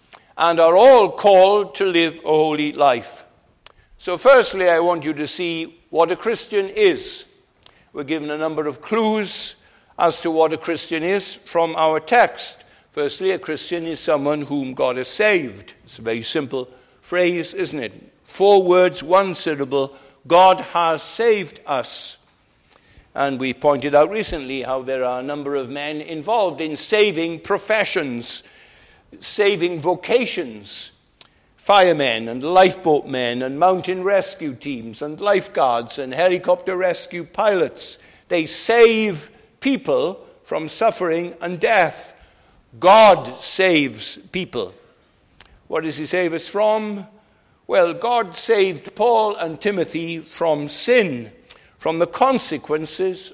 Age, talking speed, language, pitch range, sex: 60-79, 135 wpm, English, 150-205 Hz, male